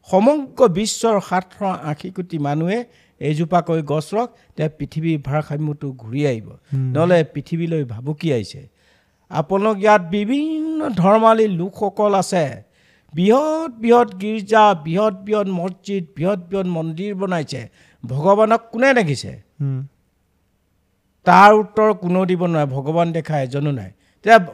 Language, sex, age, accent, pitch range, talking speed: English, male, 60-79, Indian, 155-220 Hz, 100 wpm